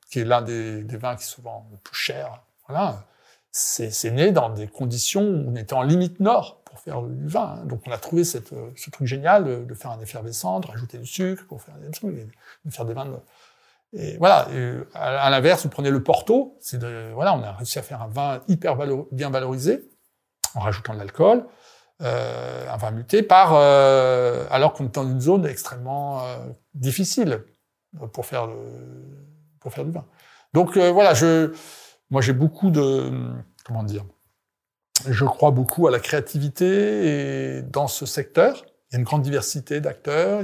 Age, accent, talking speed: 60-79, French, 190 wpm